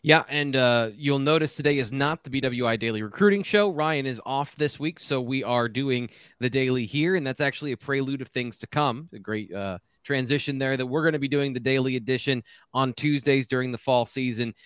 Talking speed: 220 wpm